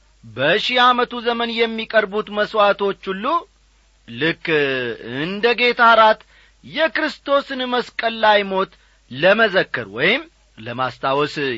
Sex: male